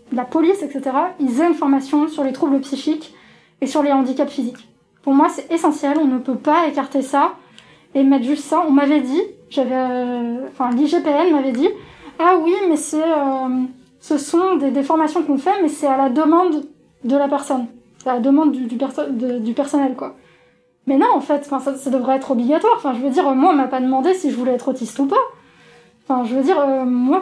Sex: female